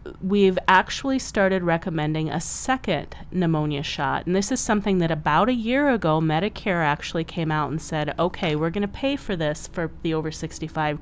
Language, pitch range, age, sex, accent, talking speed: English, 150-190 Hz, 30-49, female, American, 180 wpm